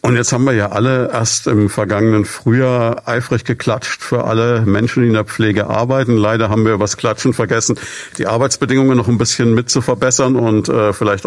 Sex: male